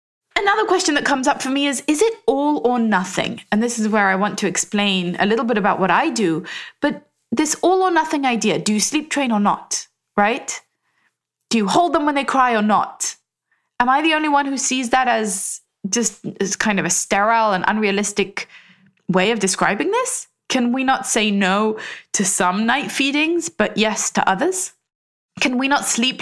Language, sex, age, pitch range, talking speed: English, female, 20-39, 200-270 Hz, 200 wpm